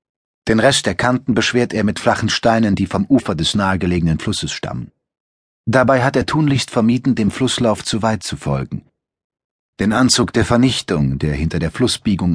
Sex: male